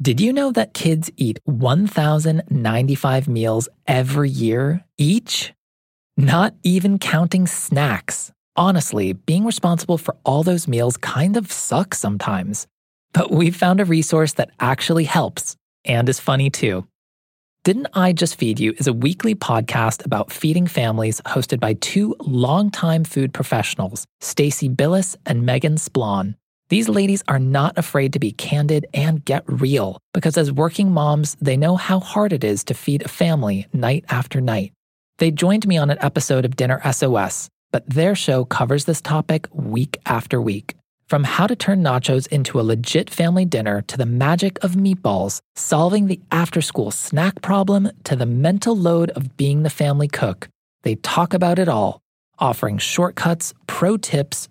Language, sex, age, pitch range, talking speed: English, male, 20-39, 130-175 Hz, 160 wpm